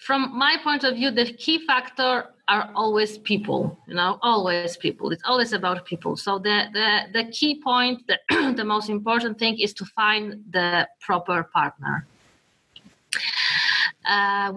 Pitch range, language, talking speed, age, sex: 205-255 Hz, English, 150 wpm, 30-49, female